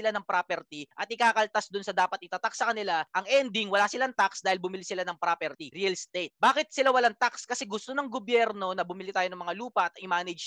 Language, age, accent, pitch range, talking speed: Filipino, 20-39, native, 190-255 Hz, 225 wpm